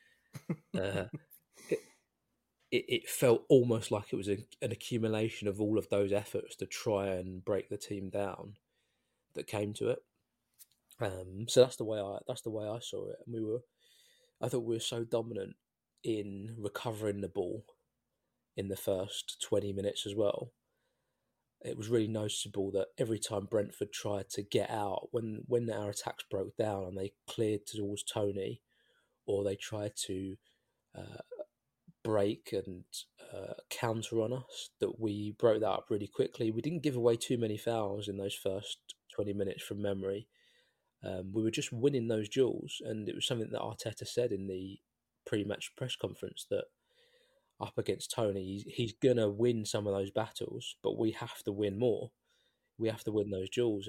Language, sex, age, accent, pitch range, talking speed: English, male, 20-39, British, 100-120 Hz, 175 wpm